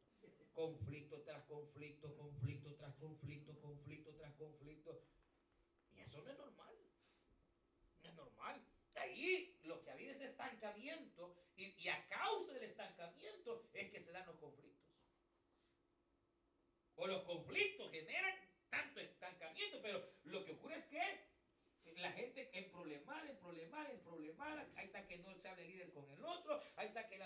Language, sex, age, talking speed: Spanish, male, 50-69, 155 wpm